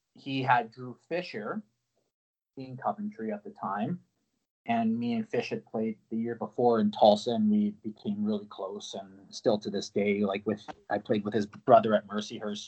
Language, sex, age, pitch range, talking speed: English, male, 30-49, 110-150 Hz, 185 wpm